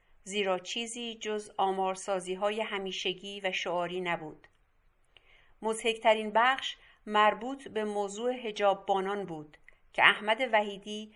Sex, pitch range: female, 195-220 Hz